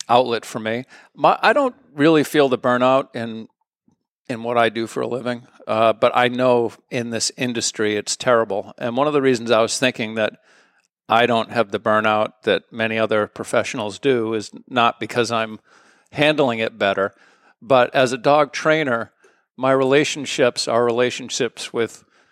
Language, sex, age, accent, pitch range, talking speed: English, male, 50-69, American, 115-130 Hz, 170 wpm